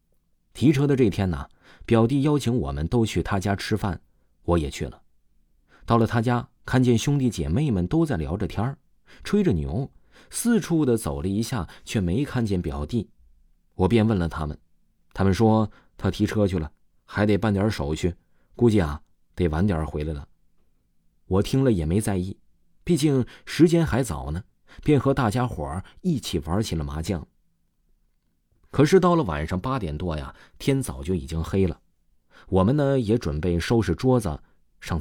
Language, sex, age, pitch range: Chinese, male, 30-49, 85-125 Hz